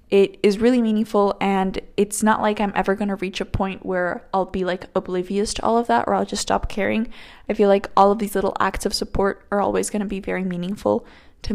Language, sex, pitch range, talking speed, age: English, female, 190-220 Hz, 245 wpm, 10-29